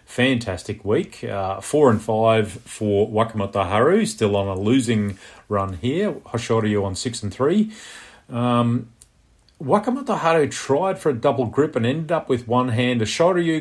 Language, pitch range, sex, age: English, 110-135 Hz, male, 40-59